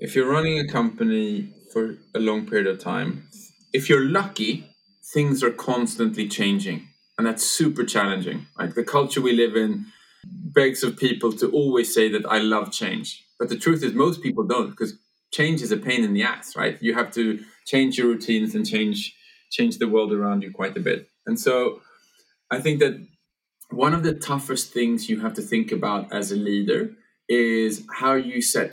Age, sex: 20-39, male